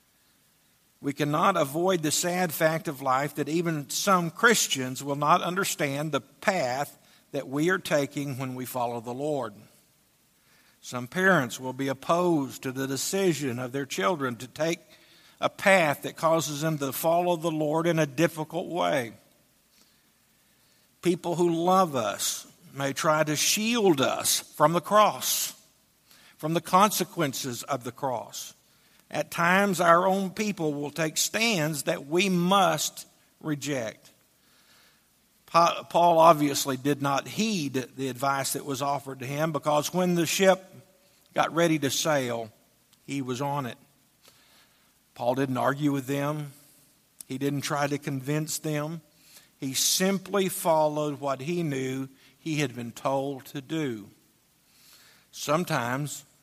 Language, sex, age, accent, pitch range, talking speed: English, male, 60-79, American, 140-170 Hz, 140 wpm